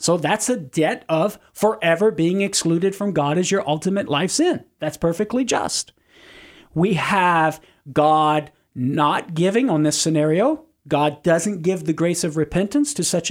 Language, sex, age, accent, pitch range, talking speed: English, male, 40-59, American, 160-210 Hz, 160 wpm